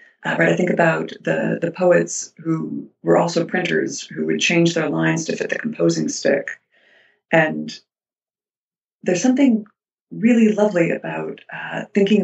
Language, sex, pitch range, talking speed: English, female, 160-195 Hz, 145 wpm